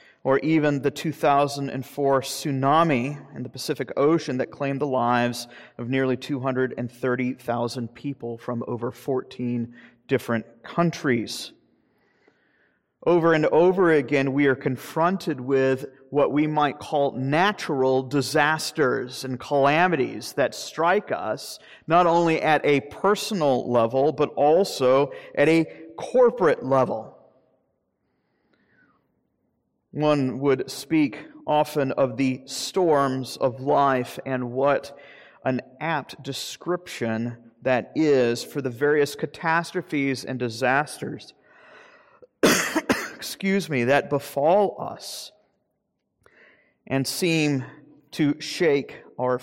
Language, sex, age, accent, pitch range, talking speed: English, male, 40-59, American, 125-150 Hz, 105 wpm